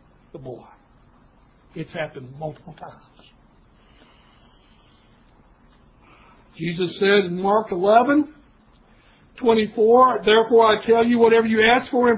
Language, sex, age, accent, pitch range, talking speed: English, male, 60-79, American, 170-230 Hz, 105 wpm